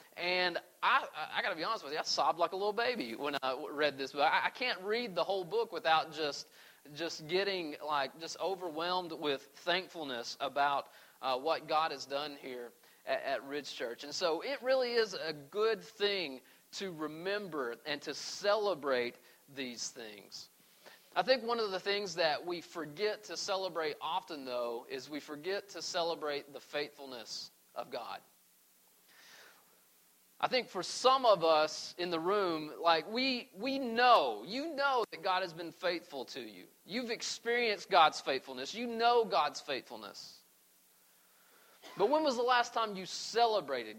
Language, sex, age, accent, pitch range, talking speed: English, male, 40-59, American, 160-225 Hz, 165 wpm